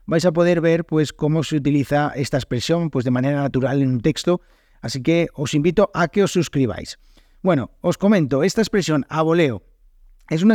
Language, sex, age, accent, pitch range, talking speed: Spanish, male, 30-49, Spanish, 135-170 Hz, 190 wpm